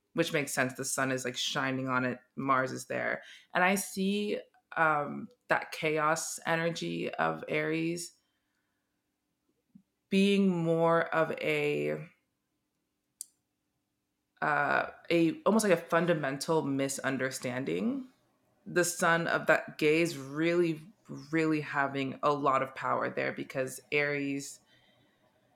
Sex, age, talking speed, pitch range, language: female, 20-39, 115 wpm, 135-170 Hz, English